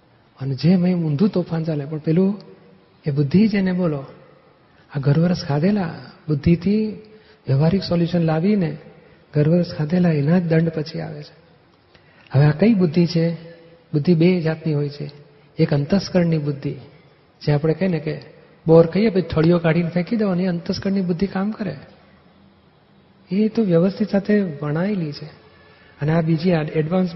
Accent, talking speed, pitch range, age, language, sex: native, 145 wpm, 155-180 Hz, 40-59, Gujarati, male